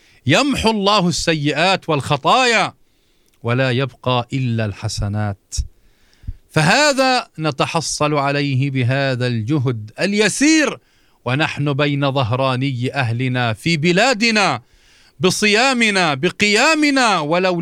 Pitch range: 115-180 Hz